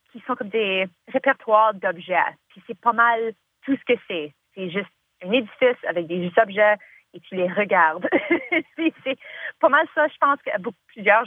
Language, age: French, 30-49